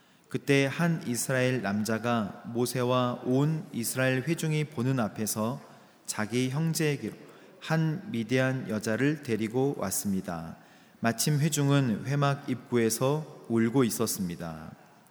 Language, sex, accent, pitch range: Korean, male, native, 110-135 Hz